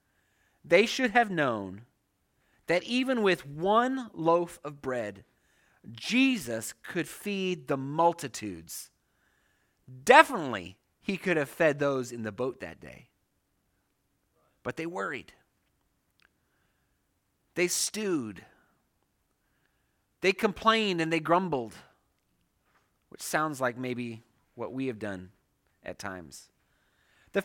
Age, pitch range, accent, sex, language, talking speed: 30-49, 125-200 Hz, American, male, English, 105 wpm